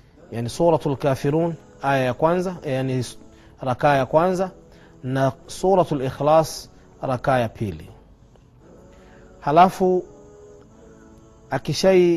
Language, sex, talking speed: Swahili, male, 90 wpm